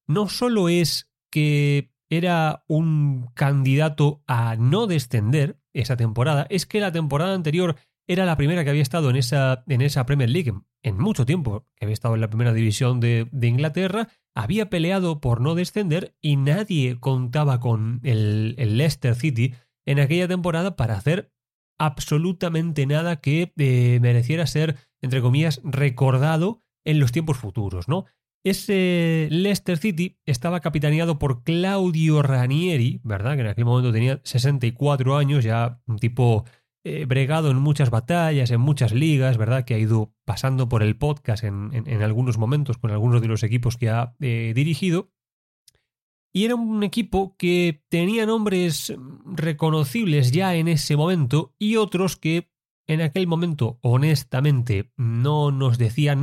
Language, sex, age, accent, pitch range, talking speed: Spanish, male, 30-49, Spanish, 125-170 Hz, 155 wpm